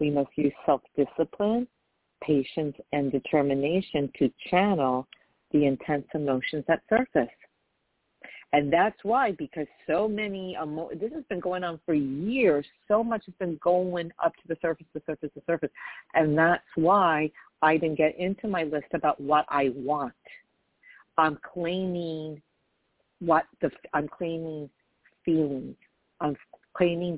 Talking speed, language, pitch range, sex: 140 wpm, English, 145-180 Hz, female